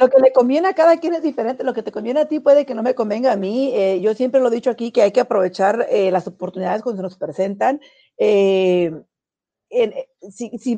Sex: female